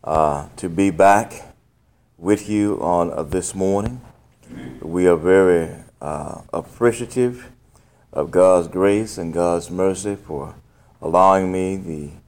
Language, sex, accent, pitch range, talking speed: English, male, American, 85-105 Hz, 120 wpm